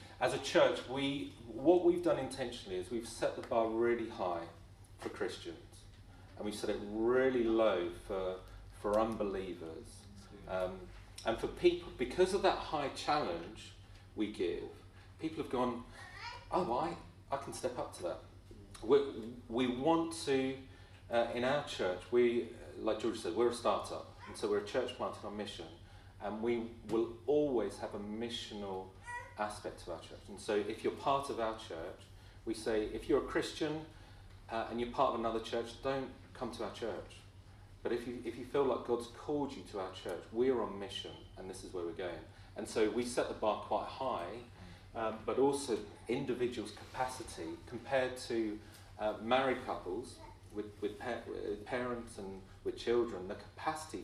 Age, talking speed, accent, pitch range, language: 30-49, 175 wpm, British, 100-125 Hz, English